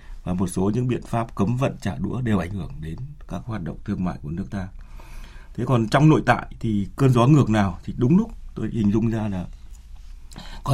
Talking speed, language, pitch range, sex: 230 wpm, Vietnamese, 100-140 Hz, male